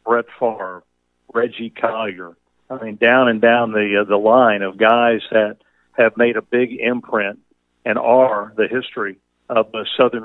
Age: 50-69